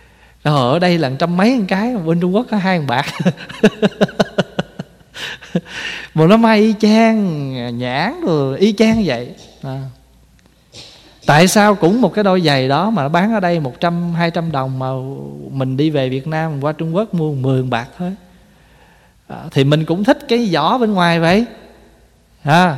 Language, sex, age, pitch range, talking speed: Vietnamese, male, 20-39, 135-195 Hz, 185 wpm